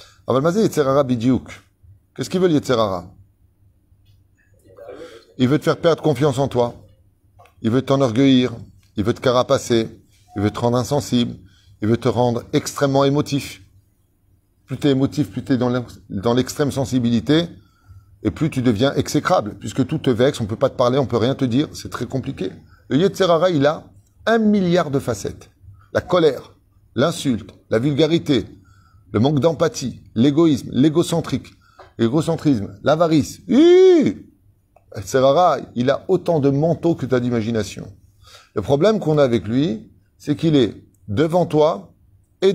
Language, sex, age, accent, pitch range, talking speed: French, male, 30-49, French, 100-150 Hz, 145 wpm